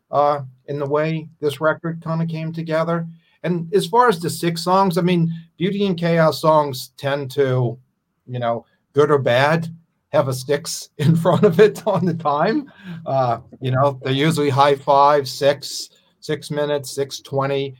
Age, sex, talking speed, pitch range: 40-59, male, 170 wpm, 120-155 Hz